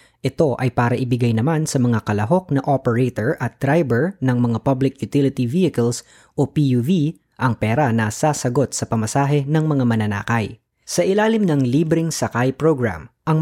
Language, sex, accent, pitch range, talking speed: Filipino, female, native, 115-145 Hz, 155 wpm